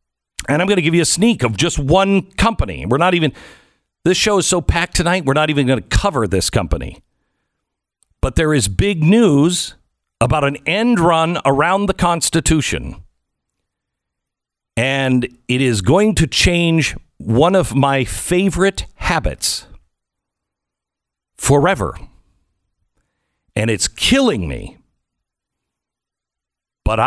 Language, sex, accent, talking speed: English, male, American, 130 wpm